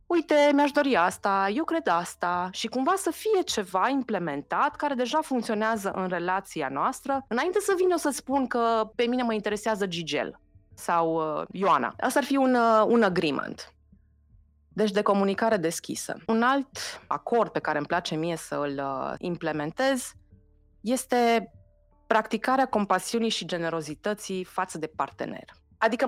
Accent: native